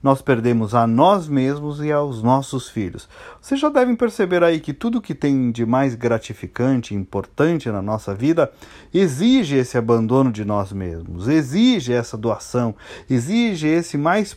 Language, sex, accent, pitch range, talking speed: Portuguese, male, Brazilian, 120-180 Hz, 160 wpm